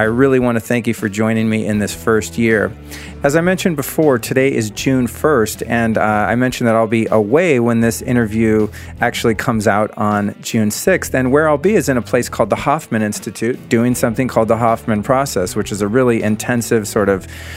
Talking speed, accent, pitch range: 215 wpm, American, 105-125 Hz